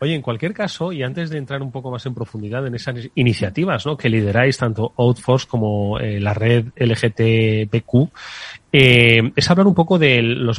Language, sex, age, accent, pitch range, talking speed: Spanish, male, 30-49, Spanish, 115-160 Hz, 185 wpm